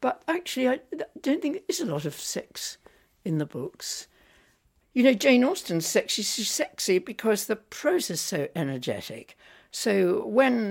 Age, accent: 60-79, British